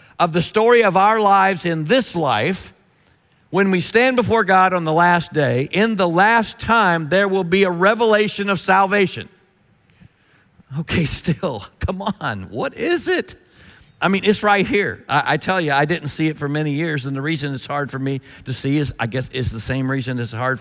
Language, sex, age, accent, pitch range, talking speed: English, male, 50-69, American, 135-195 Hz, 205 wpm